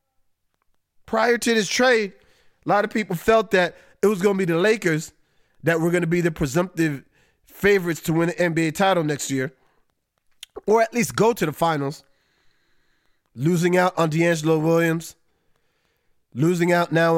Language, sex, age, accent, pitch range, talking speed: English, male, 30-49, American, 160-185 Hz, 165 wpm